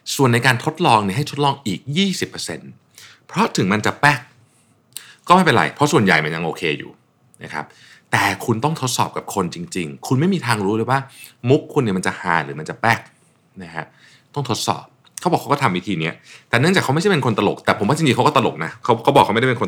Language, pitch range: Thai, 105-145 Hz